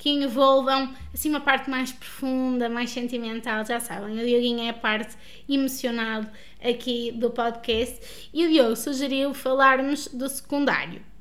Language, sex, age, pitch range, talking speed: Portuguese, female, 20-39, 235-270 Hz, 145 wpm